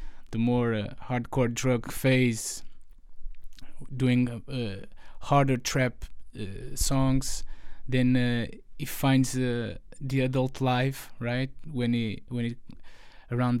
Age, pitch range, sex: 20-39, 115-130 Hz, male